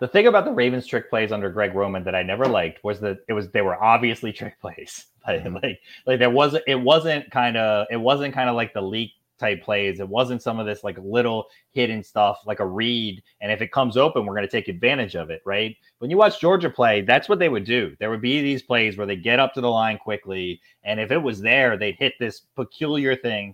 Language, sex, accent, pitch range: English, male, American, 105-130 Hz